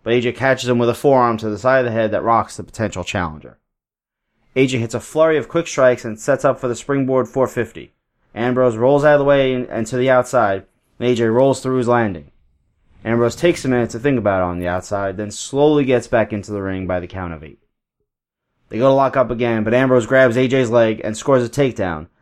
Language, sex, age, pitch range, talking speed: English, male, 20-39, 110-130 Hz, 230 wpm